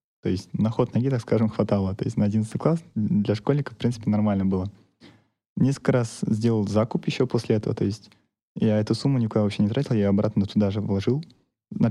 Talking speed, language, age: 205 wpm, Russian, 20-39